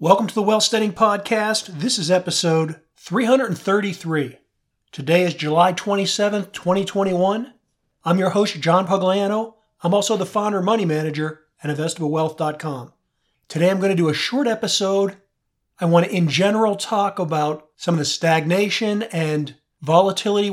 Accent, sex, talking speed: American, male, 135 wpm